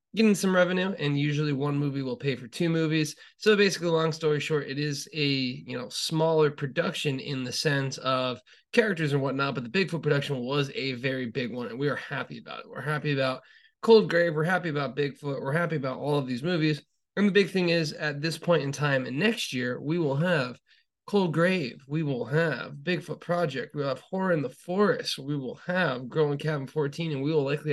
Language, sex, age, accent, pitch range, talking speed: English, male, 20-39, American, 140-165 Hz, 220 wpm